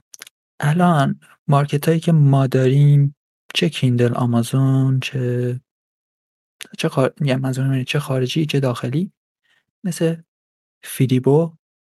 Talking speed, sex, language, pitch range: 80 wpm, male, Persian, 120-140 Hz